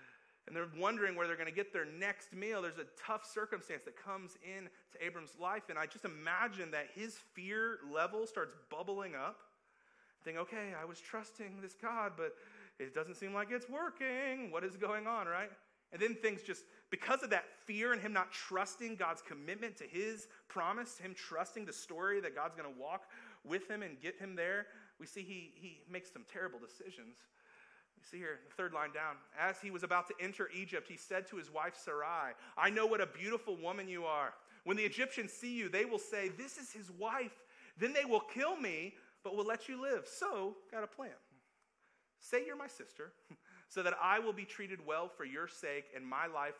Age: 30-49